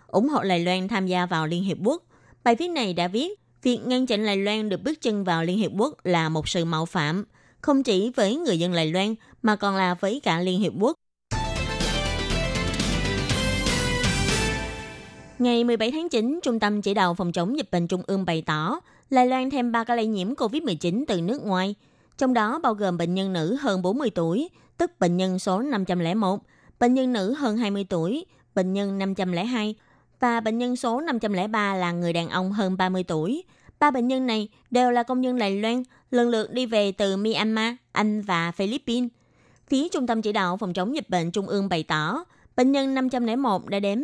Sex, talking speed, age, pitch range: female, 200 wpm, 20-39, 185-250 Hz